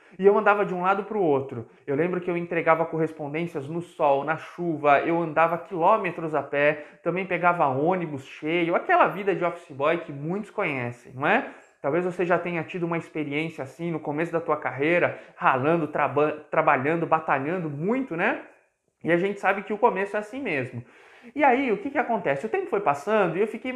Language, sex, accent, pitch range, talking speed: Portuguese, male, Brazilian, 155-220 Hz, 200 wpm